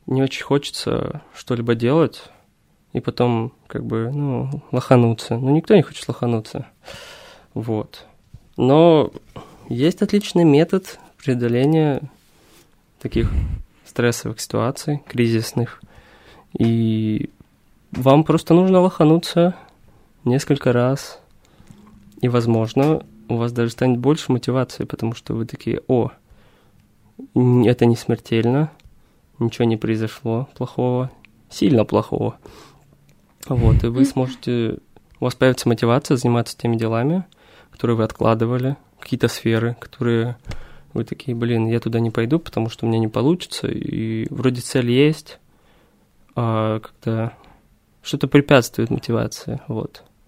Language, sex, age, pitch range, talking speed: Russian, male, 20-39, 115-145 Hz, 115 wpm